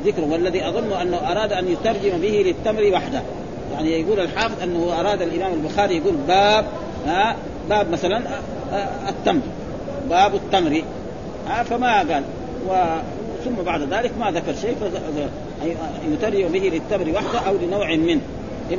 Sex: male